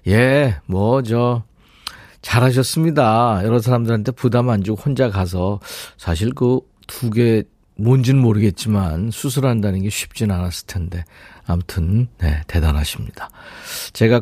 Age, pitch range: 40-59, 105-150 Hz